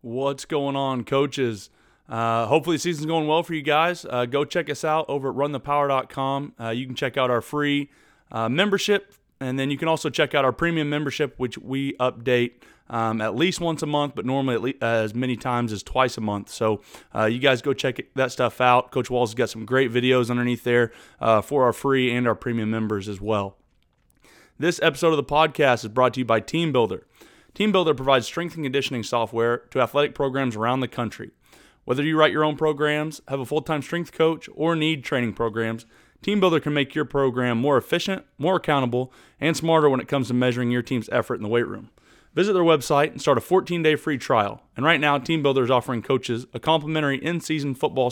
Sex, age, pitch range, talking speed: male, 30-49, 120-155 Hz, 210 wpm